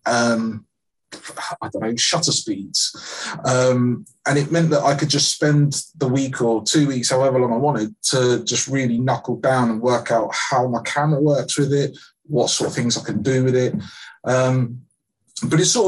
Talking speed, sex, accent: 195 wpm, male, British